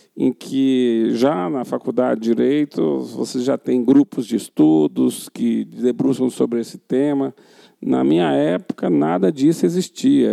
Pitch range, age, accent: 115-140 Hz, 50-69, Brazilian